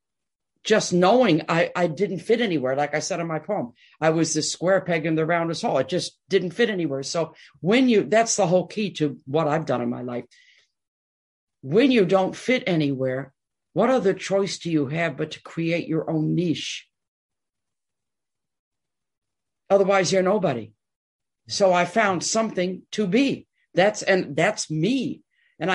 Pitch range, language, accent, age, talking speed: 145-195 Hz, English, American, 60-79, 170 wpm